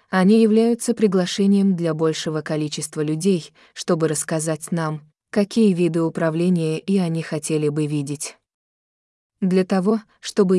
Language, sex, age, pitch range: Vietnamese, female, 20-39, 155-195 Hz